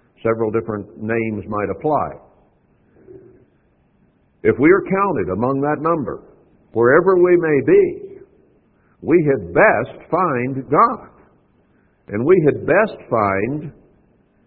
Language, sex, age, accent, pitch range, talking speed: English, male, 60-79, American, 105-140 Hz, 110 wpm